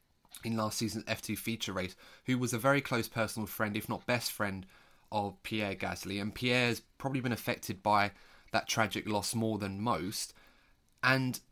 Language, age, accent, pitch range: English, 20-39, British, 110-130 Hz